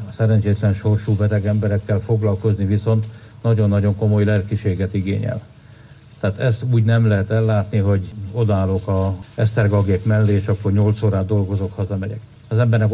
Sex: male